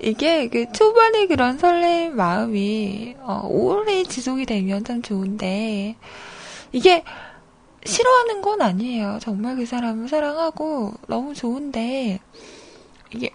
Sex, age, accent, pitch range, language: female, 20-39, native, 210-320 Hz, Korean